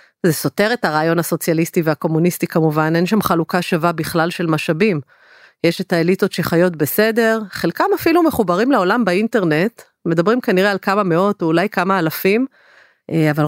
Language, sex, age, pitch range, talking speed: Hebrew, female, 30-49, 170-215 Hz, 145 wpm